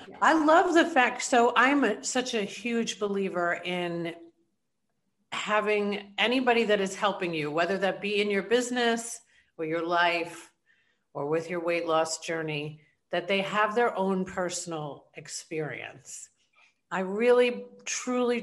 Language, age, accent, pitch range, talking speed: English, 50-69, American, 170-225 Hz, 135 wpm